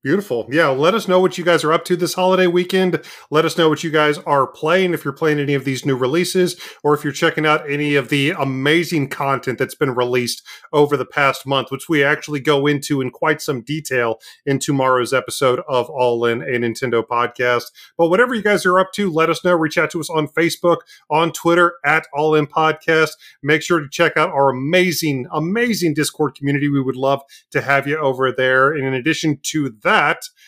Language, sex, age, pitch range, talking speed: English, male, 30-49, 135-170 Hz, 220 wpm